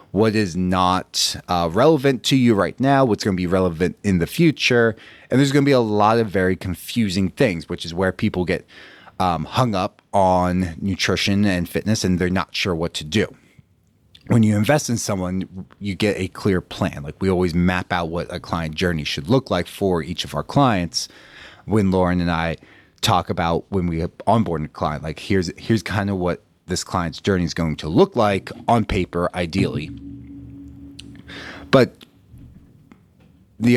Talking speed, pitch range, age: 185 wpm, 90-110 Hz, 30-49